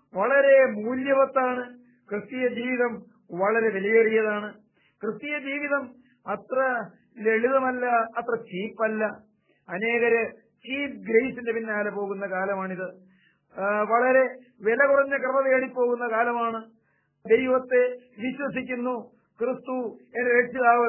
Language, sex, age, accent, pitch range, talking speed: Malayalam, male, 50-69, native, 220-255 Hz, 85 wpm